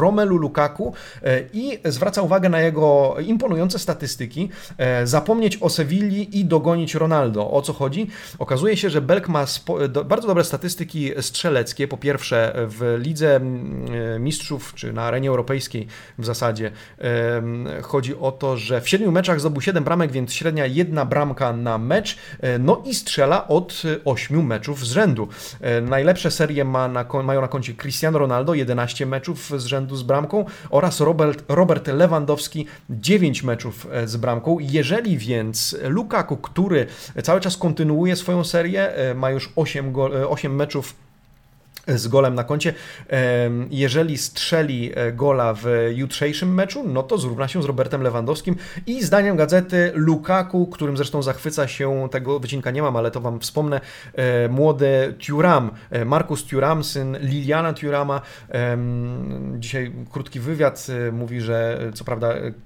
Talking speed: 140 wpm